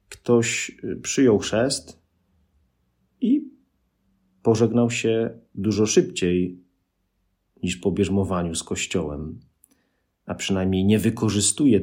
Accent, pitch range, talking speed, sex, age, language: native, 90-120 Hz, 85 wpm, male, 40-59, Polish